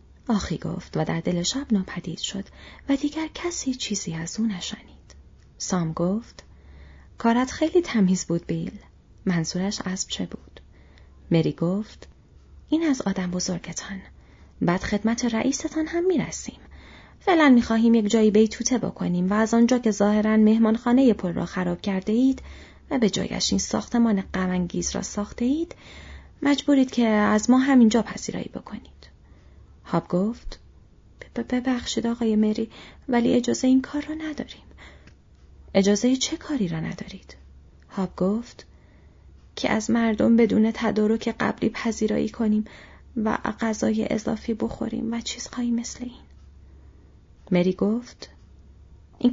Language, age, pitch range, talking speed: Persian, 30-49, 170-245 Hz, 130 wpm